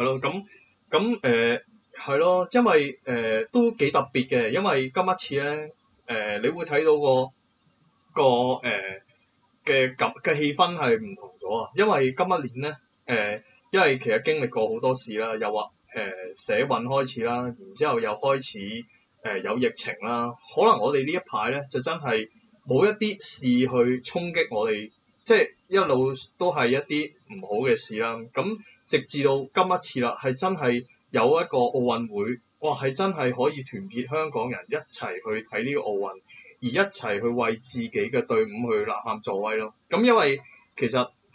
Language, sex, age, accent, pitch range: Chinese, male, 20-39, native, 120-200 Hz